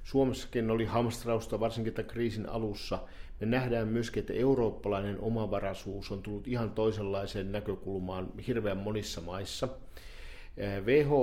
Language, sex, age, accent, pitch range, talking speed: Finnish, male, 50-69, native, 100-115 Hz, 110 wpm